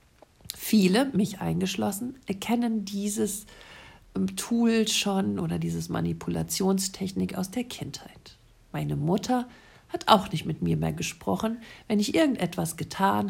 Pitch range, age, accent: 170-225 Hz, 50-69, German